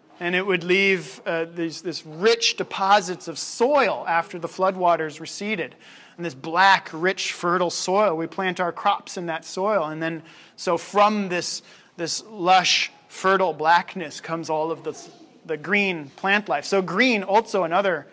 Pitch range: 175-205 Hz